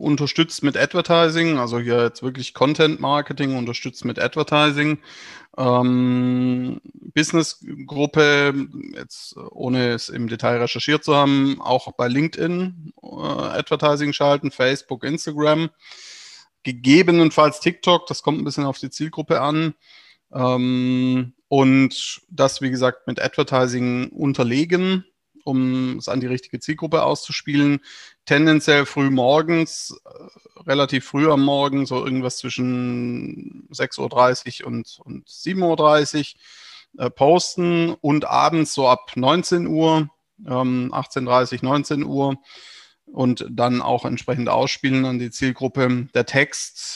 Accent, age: German, 30-49